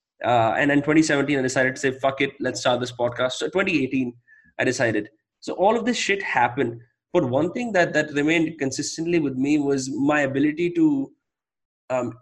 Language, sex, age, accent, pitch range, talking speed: English, male, 20-39, Indian, 135-175 Hz, 185 wpm